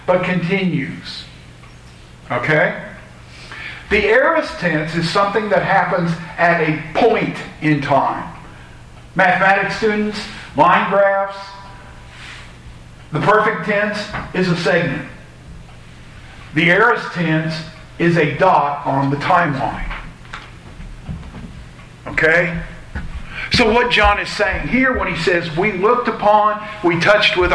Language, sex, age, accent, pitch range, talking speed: English, male, 50-69, American, 150-200 Hz, 110 wpm